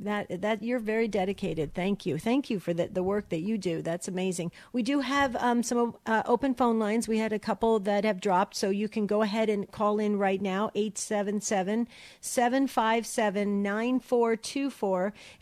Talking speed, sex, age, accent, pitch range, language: 175 wpm, female, 50-69, American, 205-240 Hz, English